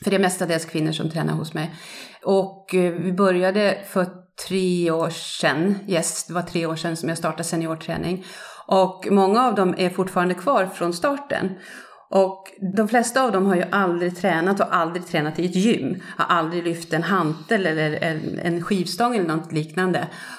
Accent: native